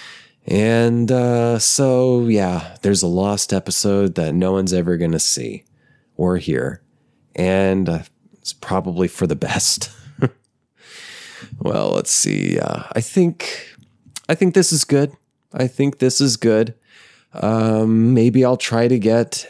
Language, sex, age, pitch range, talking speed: English, male, 20-39, 95-115 Hz, 140 wpm